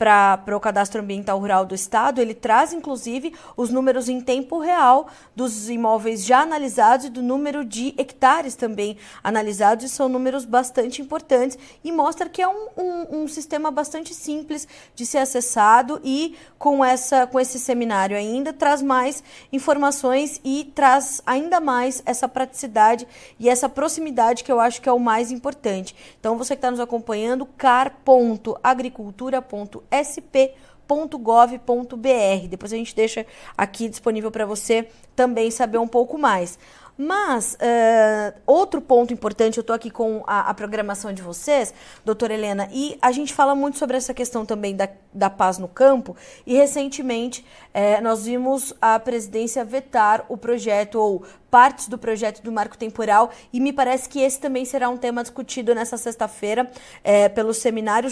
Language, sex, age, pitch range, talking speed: Portuguese, female, 20-39, 225-275 Hz, 155 wpm